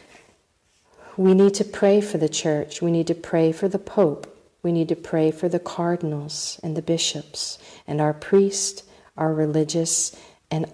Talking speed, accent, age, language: 170 wpm, American, 50-69, English